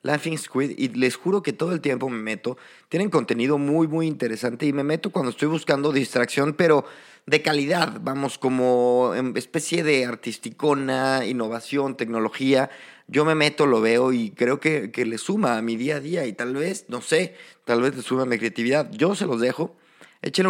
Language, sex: Spanish, male